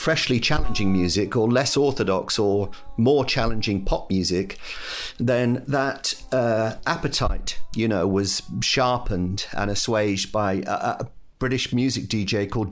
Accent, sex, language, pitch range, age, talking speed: British, male, English, 95-120 Hz, 50-69, 130 wpm